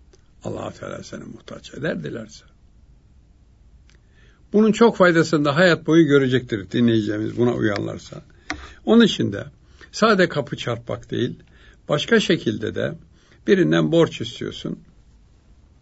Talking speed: 110 wpm